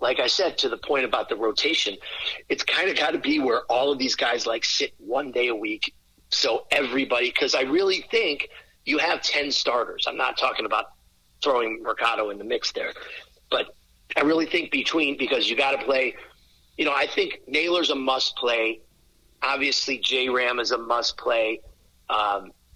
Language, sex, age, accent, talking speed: English, male, 40-59, American, 185 wpm